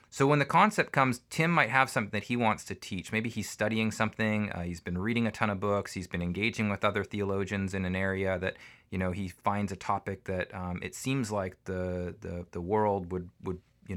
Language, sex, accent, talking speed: English, male, American, 230 wpm